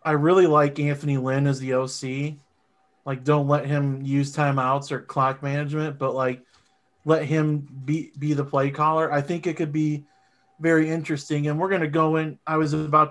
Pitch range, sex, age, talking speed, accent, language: 130-150 Hz, male, 30-49, 190 wpm, American, English